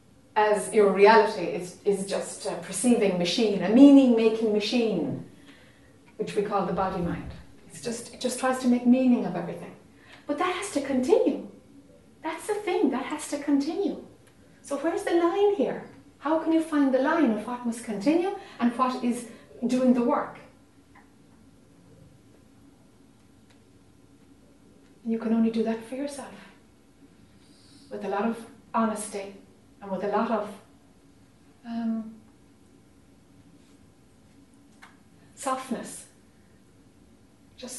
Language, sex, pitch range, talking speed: English, female, 210-255 Hz, 125 wpm